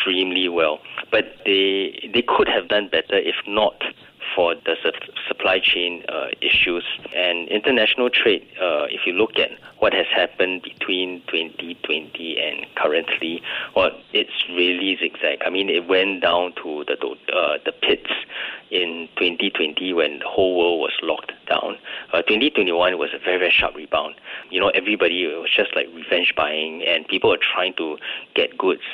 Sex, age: male, 30-49